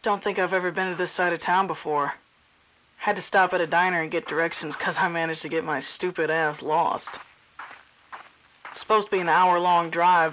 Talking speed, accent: 205 wpm, American